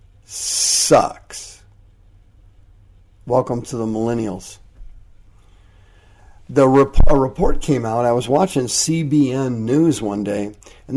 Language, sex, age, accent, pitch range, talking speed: English, male, 50-69, American, 100-135 Hz, 95 wpm